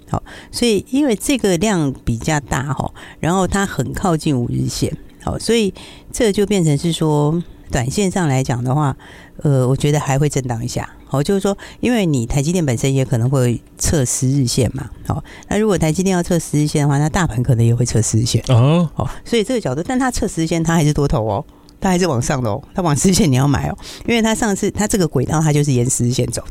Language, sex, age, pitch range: Chinese, female, 50-69, 130-175 Hz